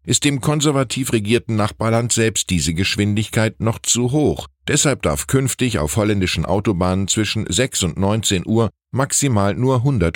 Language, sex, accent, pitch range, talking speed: German, male, German, 80-120 Hz, 150 wpm